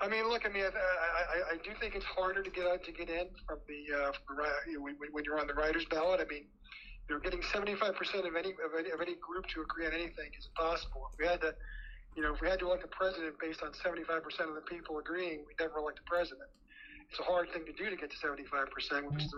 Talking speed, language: 270 wpm, English